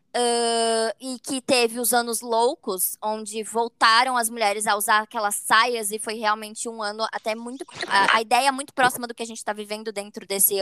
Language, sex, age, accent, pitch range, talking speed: Portuguese, male, 20-39, Brazilian, 215-280 Hz, 190 wpm